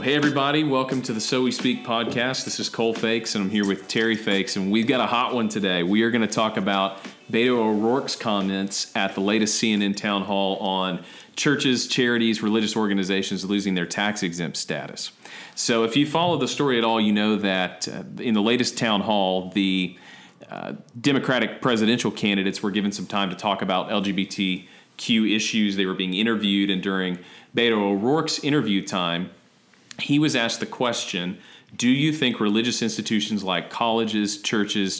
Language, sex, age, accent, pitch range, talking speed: English, male, 40-59, American, 95-115 Hz, 180 wpm